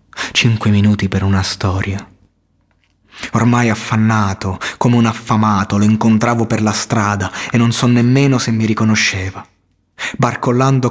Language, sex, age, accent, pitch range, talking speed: Italian, male, 20-39, native, 105-130 Hz, 125 wpm